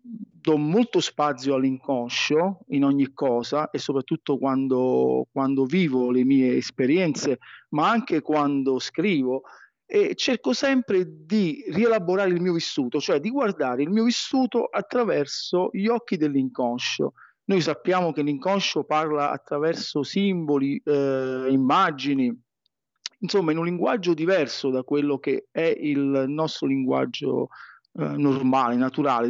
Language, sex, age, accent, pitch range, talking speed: Italian, male, 40-59, native, 135-190 Hz, 125 wpm